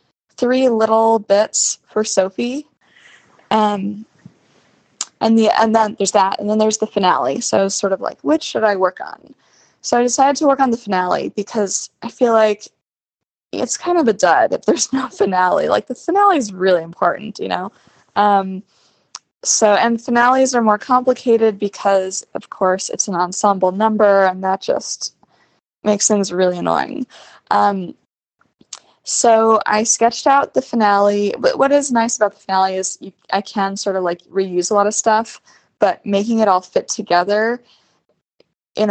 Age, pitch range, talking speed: 20-39, 190-235 Hz, 170 wpm